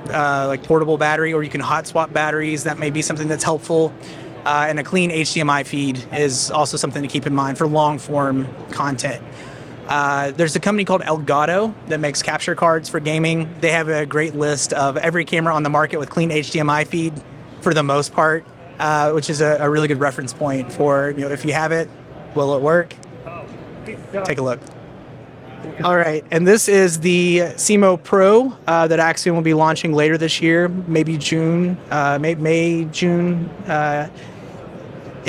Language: English